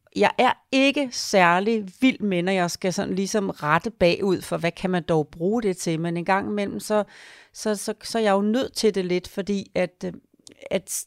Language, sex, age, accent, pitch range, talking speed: Danish, female, 40-59, native, 175-215 Hz, 210 wpm